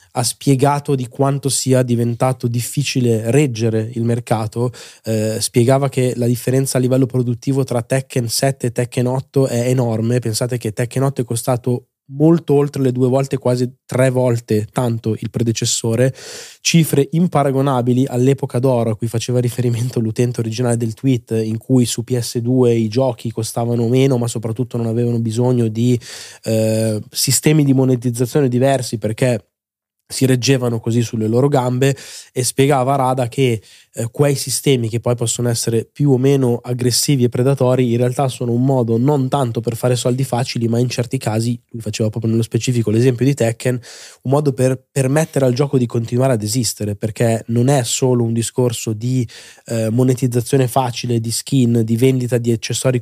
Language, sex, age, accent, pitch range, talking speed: Italian, male, 20-39, native, 120-135 Hz, 165 wpm